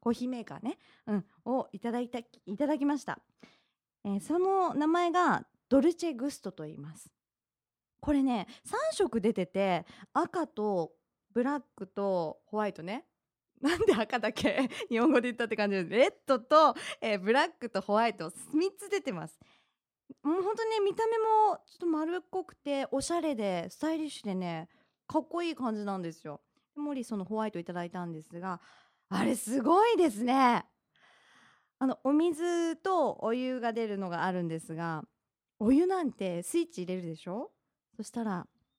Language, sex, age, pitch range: Japanese, female, 20-39, 195-320 Hz